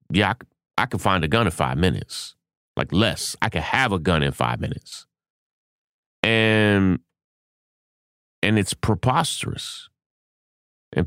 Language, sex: English, male